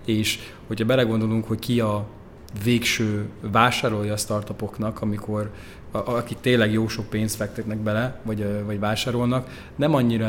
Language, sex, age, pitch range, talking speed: Hungarian, male, 20-39, 110-120 Hz, 135 wpm